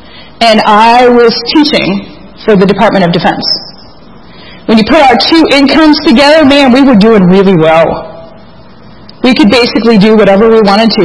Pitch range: 200-250 Hz